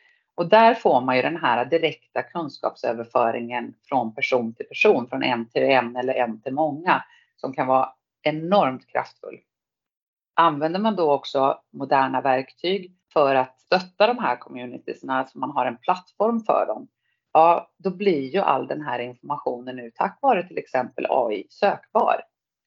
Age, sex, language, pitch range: 30-49, female, Swedish, 130-190 Hz